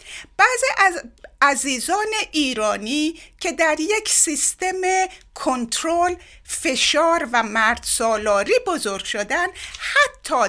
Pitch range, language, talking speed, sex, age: 230-345 Hz, Persian, 90 wpm, female, 60-79